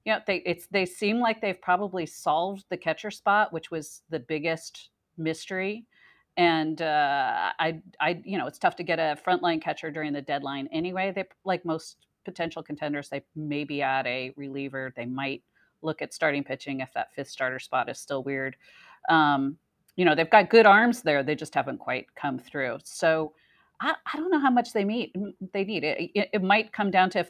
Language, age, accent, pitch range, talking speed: English, 40-59, American, 145-200 Hz, 205 wpm